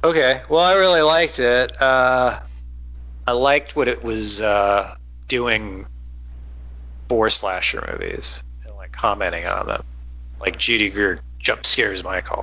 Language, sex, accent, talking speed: English, male, American, 135 wpm